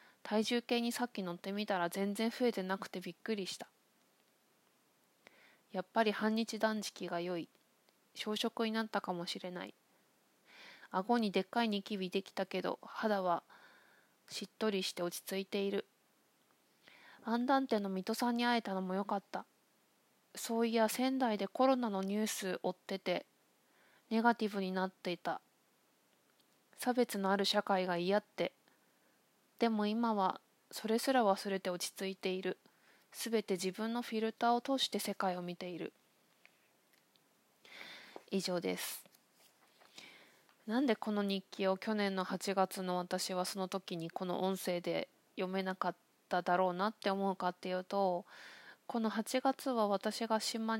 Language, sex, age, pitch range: Japanese, female, 20-39, 190-225 Hz